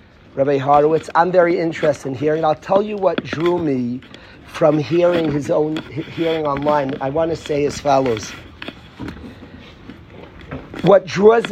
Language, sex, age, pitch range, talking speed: English, male, 40-59, 155-210 Hz, 140 wpm